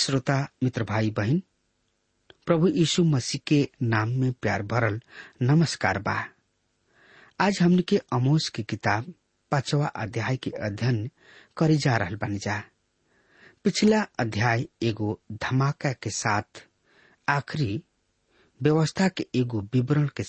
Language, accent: English, Indian